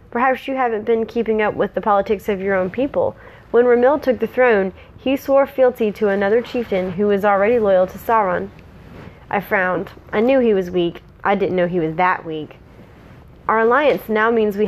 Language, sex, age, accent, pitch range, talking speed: English, female, 30-49, American, 180-225 Hz, 200 wpm